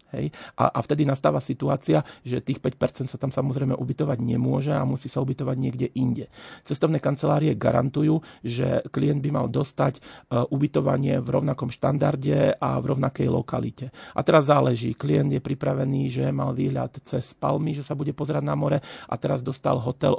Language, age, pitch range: Slovak, 40-59, 125-145 Hz